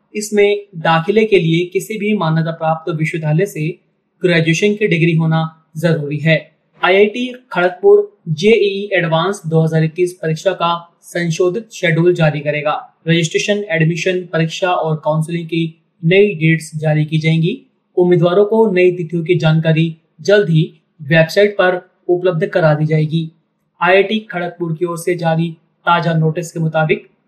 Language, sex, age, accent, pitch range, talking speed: Hindi, male, 30-49, native, 160-195 Hz, 145 wpm